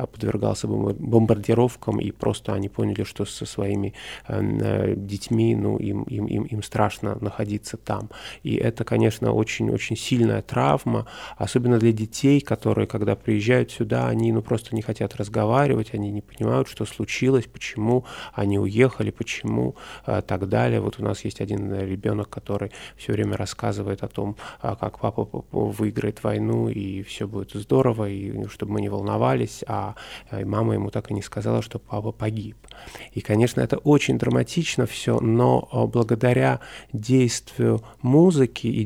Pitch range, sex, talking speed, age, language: 105-125 Hz, male, 145 wpm, 20-39, Russian